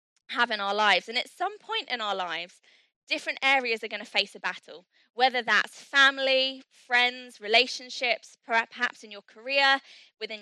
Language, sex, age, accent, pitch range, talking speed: English, female, 20-39, British, 215-275 Hz, 165 wpm